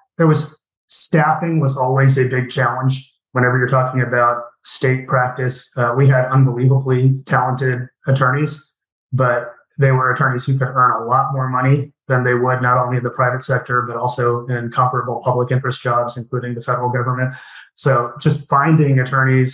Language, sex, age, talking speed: English, male, 30-49, 170 wpm